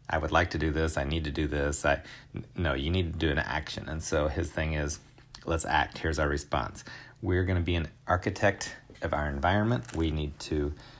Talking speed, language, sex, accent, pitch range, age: 225 wpm, English, male, American, 80-130 Hz, 30-49